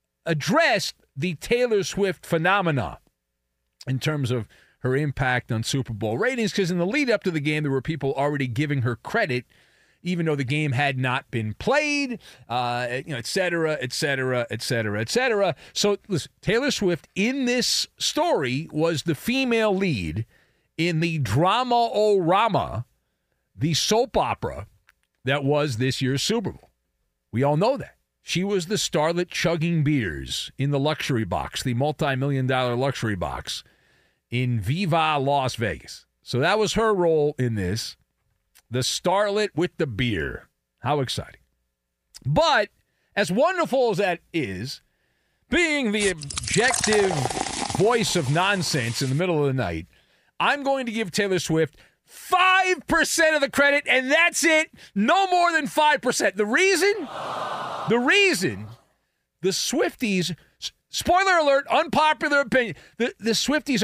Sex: male